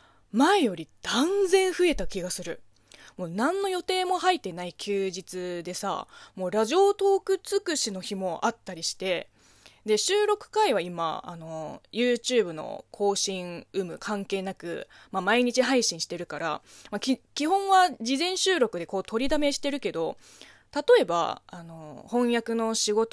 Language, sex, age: Japanese, female, 20-39